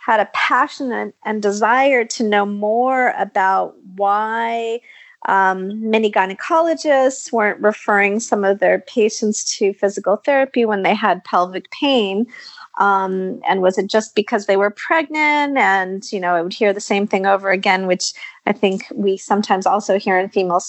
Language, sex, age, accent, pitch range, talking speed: English, female, 30-49, American, 190-235 Hz, 160 wpm